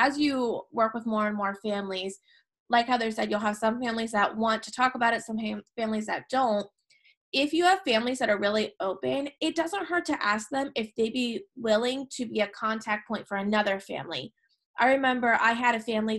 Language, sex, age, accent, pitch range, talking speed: English, female, 20-39, American, 205-250 Hz, 210 wpm